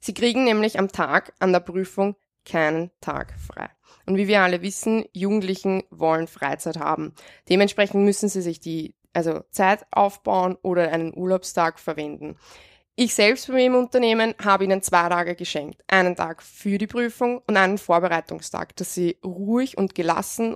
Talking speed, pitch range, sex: 160 wpm, 165-200 Hz, female